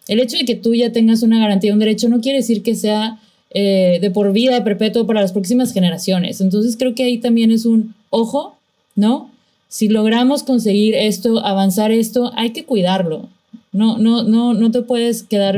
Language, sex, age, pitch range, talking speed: Spanish, female, 20-39, 195-225 Hz, 195 wpm